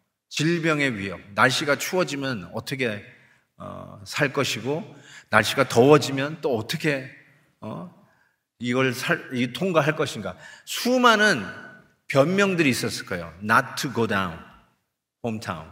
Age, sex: 40-59, male